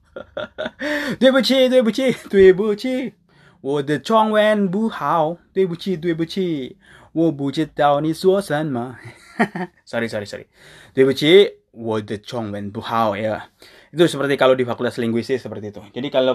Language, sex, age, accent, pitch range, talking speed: Indonesian, male, 20-39, native, 115-170 Hz, 115 wpm